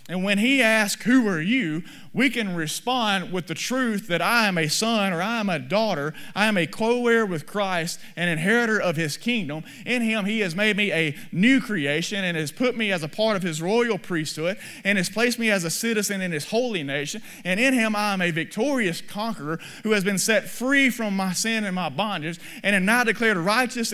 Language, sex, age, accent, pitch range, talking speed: English, male, 30-49, American, 165-230 Hz, 225 wpm